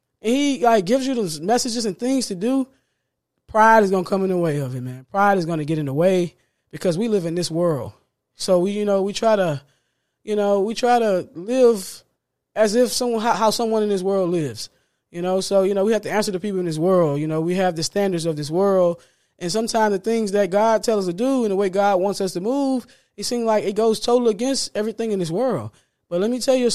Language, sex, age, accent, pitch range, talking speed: English, male, 20-39, American, 170-215 Hz, 260 wpm